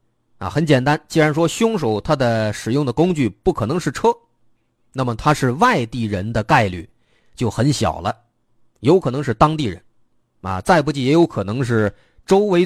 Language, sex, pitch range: Chinese, male, 110-155 Hz